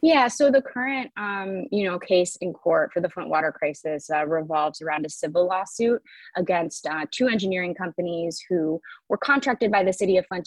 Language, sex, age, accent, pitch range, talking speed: English, female, 20-39, American, 160-200 Hz, 195 wpm